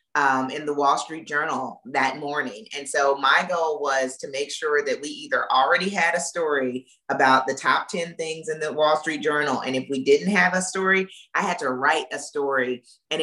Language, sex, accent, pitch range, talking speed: English, female, American, 135-180 Hz, 215 wpm